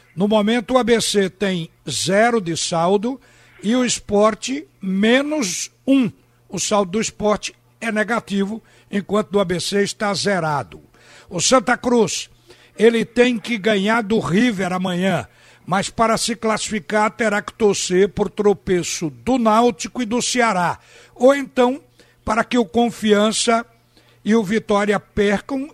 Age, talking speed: 60-79, 135 wpm